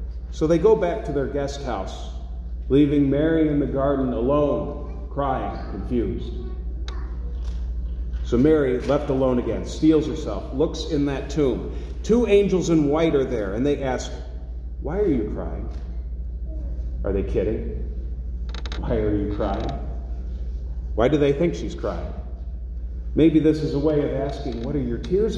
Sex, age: male, 40-59